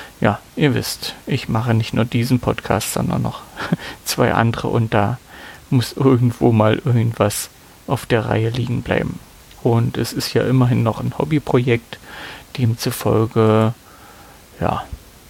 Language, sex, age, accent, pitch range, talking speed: German, male, 40-59, German, 115-135 Hz, 135 wpm